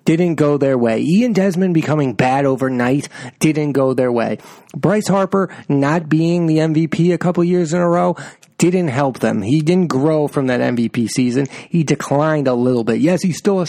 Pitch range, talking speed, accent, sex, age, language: 125-170 Hz, 195 wpm, American, male, 30-49, English